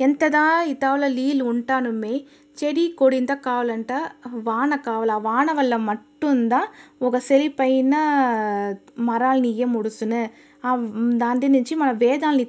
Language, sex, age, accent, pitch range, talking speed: Telugu, female, 20-39, native, 230-275 Hz, 115 wpm